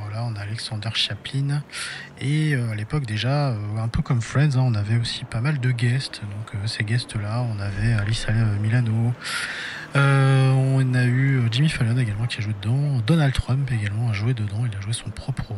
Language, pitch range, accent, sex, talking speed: French, 105-130 Hz, French, male, 175 wpm